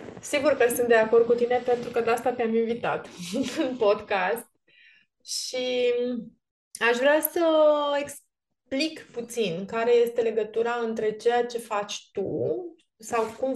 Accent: native